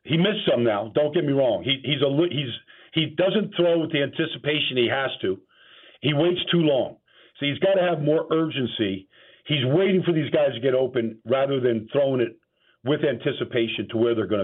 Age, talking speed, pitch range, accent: 50-69, 210 wpm, 125-175 Hz, American